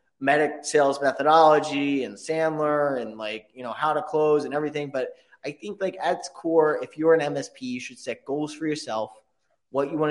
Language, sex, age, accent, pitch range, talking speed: English, male, 20-39, American, 120-150 Hz, 200 wpm